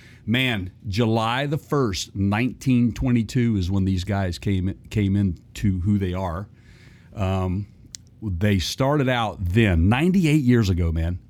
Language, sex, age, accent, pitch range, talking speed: English, male, 50-69, American, 100-120 Hz, 135 wpm